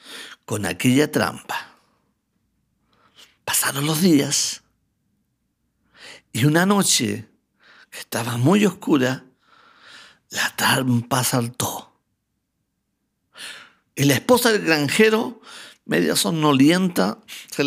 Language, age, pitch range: Spanish, 50-69, 115-155 Hz